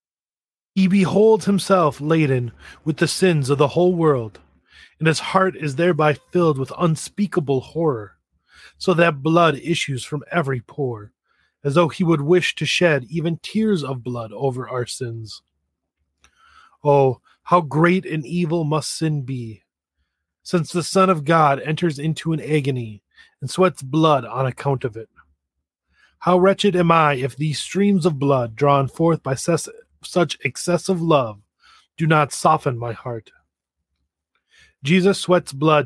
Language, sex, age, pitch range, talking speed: English, male, 30-49, 130-170 Hz, 150 wpm